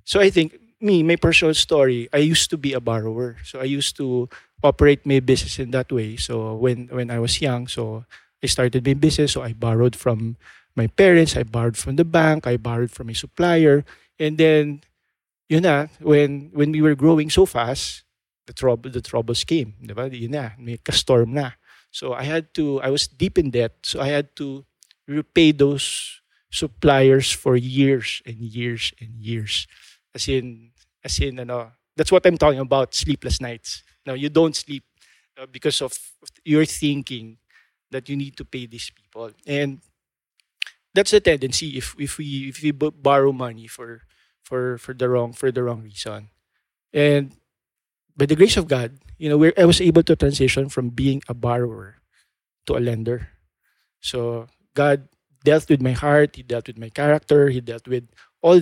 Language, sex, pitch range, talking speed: English, male, 120-150 Hz, 180 wpm